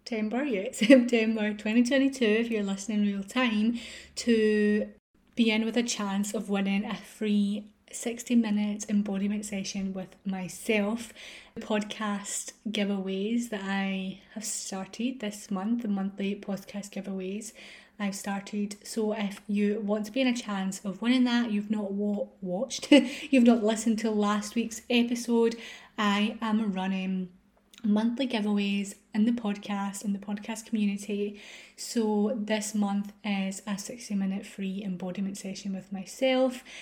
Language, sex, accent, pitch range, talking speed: English, female, British, 195-225 Hz, 135 wpm